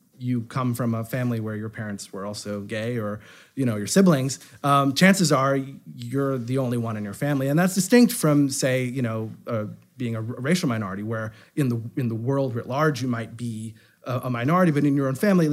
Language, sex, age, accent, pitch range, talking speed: English, male, 30-49, American, 110-145 Hz, 225 wpm